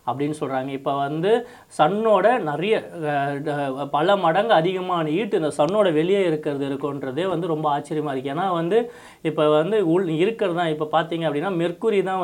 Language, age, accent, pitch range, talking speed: Tamil, 30-49, native, 145-185 Hz, 140 wpm